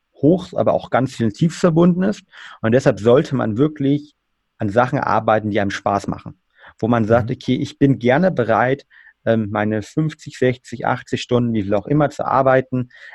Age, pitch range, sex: 30-49, 110-135 Hz, male